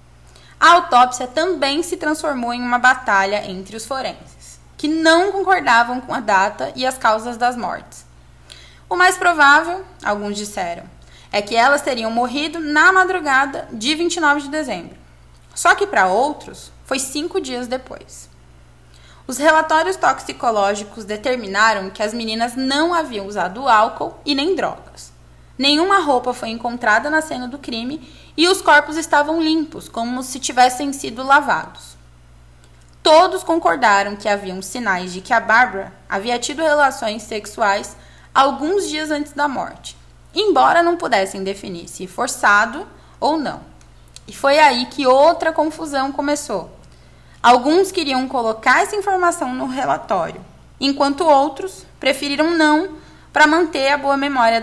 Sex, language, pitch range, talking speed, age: female, Portuguese, 200-305 Hz, 140 wpm, 10-29